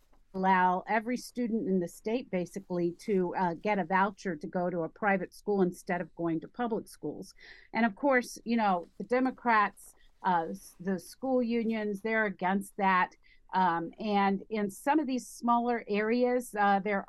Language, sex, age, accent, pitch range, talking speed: English, female, 50-69, American, 185-225 Hz, 170 wpm